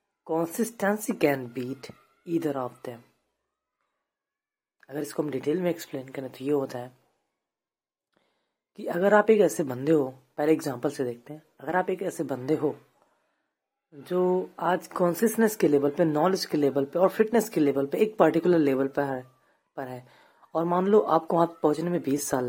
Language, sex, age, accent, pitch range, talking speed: Hindi, female, 30-49, native, 140-185 Hz, 180 wpm